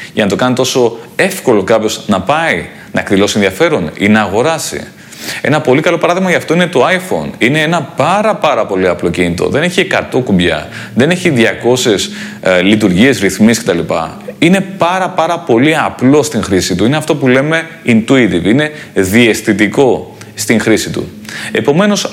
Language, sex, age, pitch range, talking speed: Greek, male, 30-49, 110-160 Hz, 165 wpm